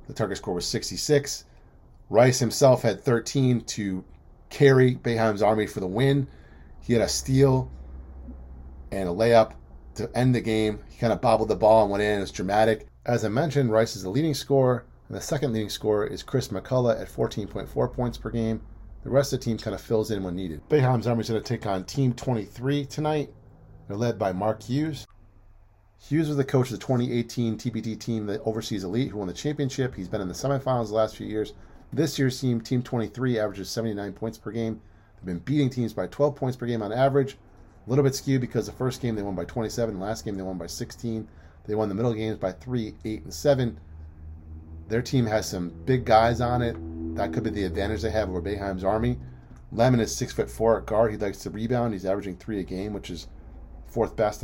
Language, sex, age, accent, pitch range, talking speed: English, male, 40-59, American, 95-125 Hz, 215 wpm